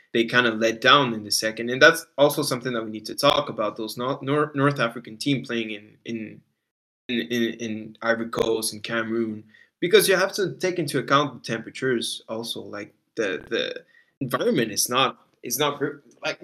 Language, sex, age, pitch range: English, male, 20-39, 115-150 Hz